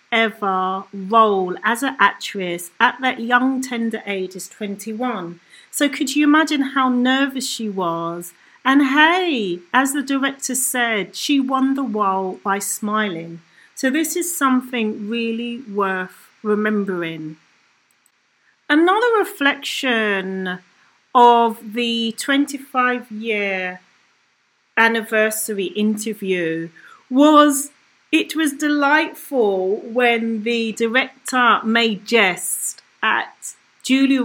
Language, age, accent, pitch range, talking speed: English, 40-59, British, 200-260 Hz, 100 wpm